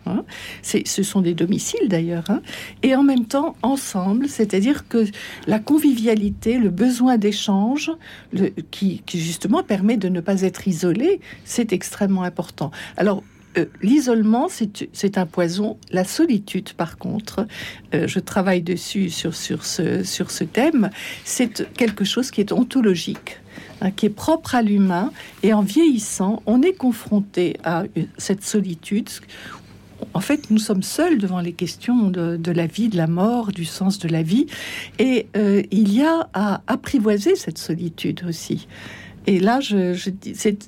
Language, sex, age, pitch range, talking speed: French, female, 60-79, 190-250 Hz, 160 wpm